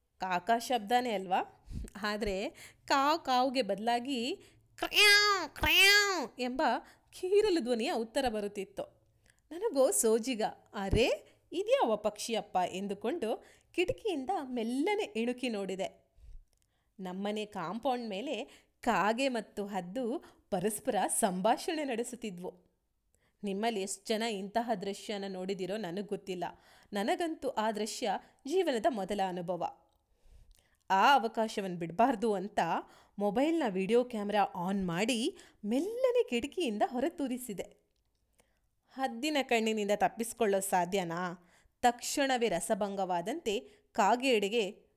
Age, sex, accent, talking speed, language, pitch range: 30-49, female, native, 90 wpm, Kannada, 205-280 Hz